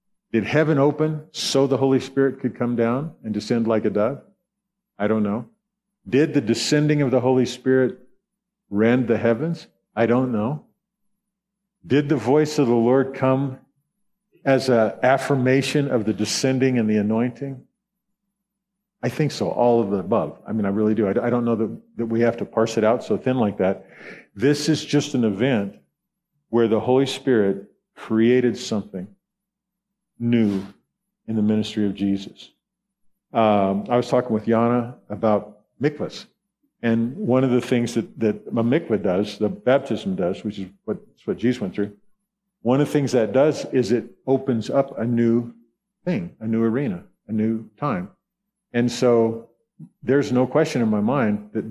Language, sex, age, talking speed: English, male, 50-69, 170 wpm